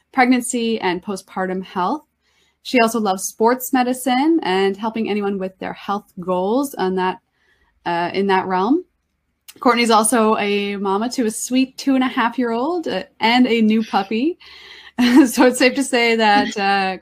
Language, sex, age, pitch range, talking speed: English, female, 20-39, 185-250 Hz, 165 wpm